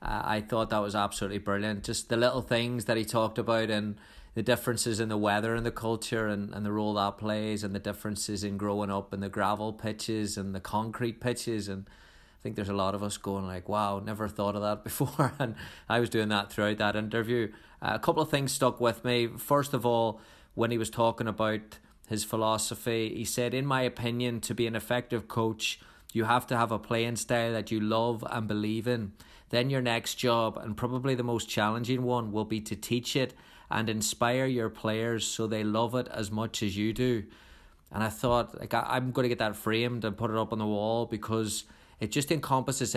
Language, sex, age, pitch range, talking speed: English, male, 30-49, 105-120 Hz, 220 wpm